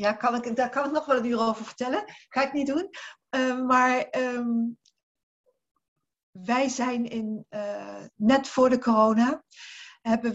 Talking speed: 145 wpm